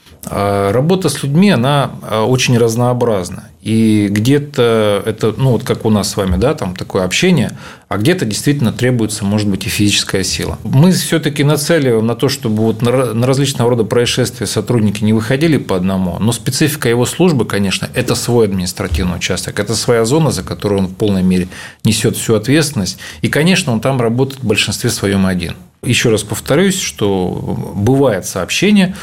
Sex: male